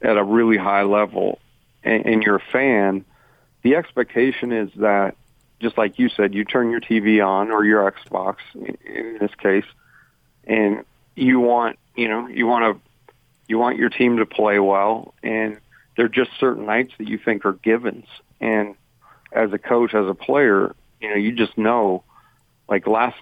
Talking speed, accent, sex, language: 175 wpm, American, male, English